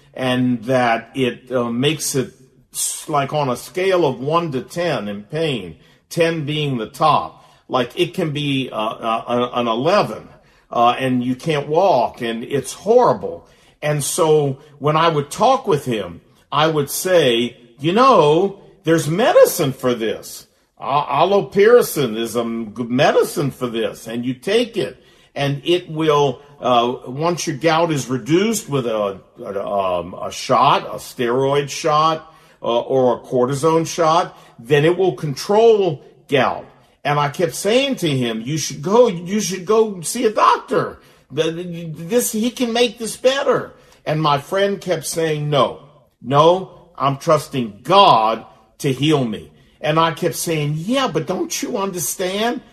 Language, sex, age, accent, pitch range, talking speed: English, male, 50-69, American, 130-180 Hz, 155 wpm